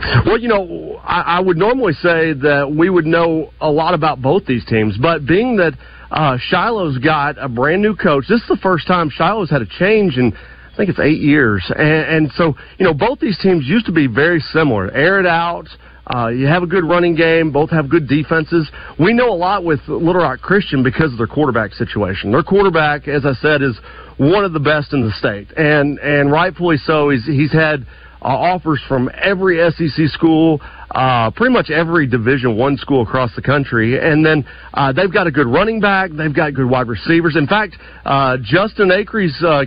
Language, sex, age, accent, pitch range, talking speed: English, male, 40-59, American, 135-170 Hz, 210 wpm